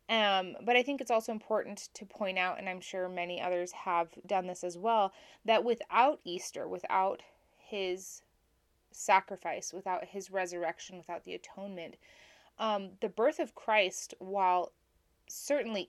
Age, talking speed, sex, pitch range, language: 20-39, 145 wpm, female, 180-215 Hz, English